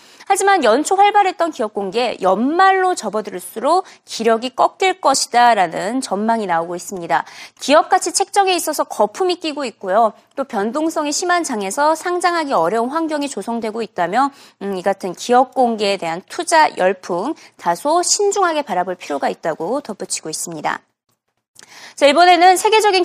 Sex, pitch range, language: female, 215-335 Hz, Korean